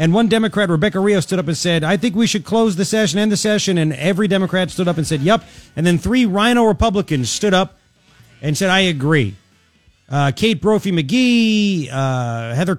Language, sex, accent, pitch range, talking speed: English, male, American, 150-215 Hz, 210 wpm